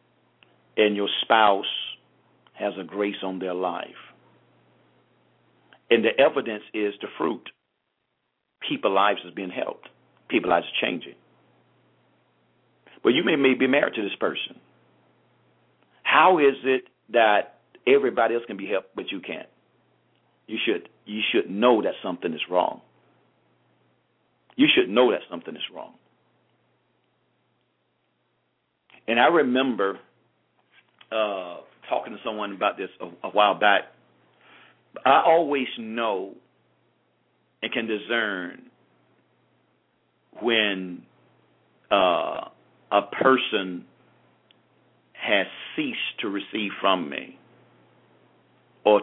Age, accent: 50-69, American